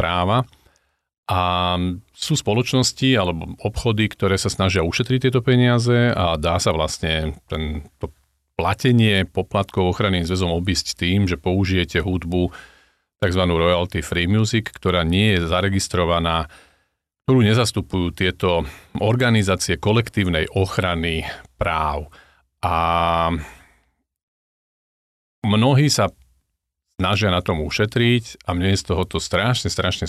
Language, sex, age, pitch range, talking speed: Slovak, male, 40-59, 85-105 Hz, 110 wpm